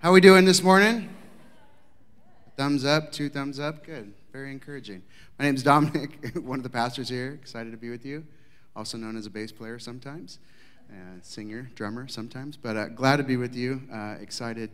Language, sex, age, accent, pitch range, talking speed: English, male, 30-49, American, 110-140 Hz, 190 wpm